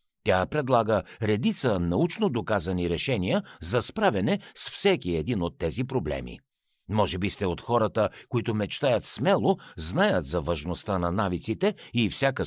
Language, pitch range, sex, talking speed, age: Bulgarian, 90-145 Hz, male, 140 wpm, 60-79